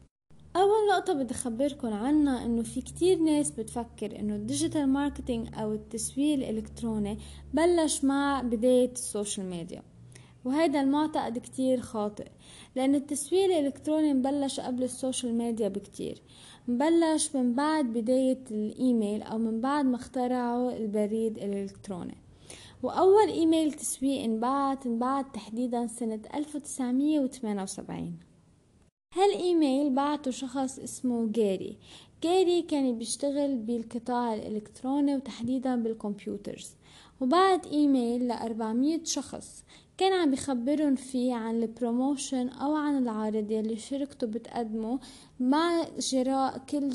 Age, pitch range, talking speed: 20-39, 225-285 Hz, 110 wpm